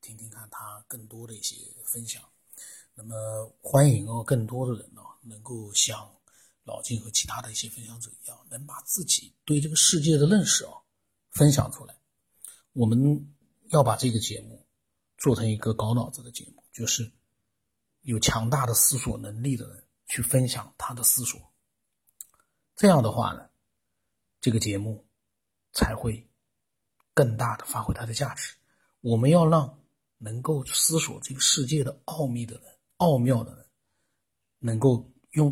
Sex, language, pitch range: male, Chinese, 110-135 Hz